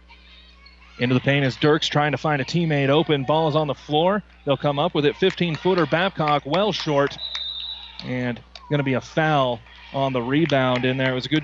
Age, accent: 30-49, American